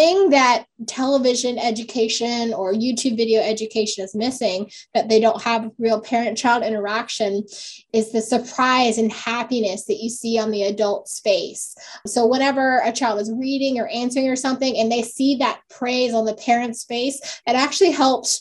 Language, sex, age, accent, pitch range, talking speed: English, female, 10-29, American, 220-255 Hz, 165 wpm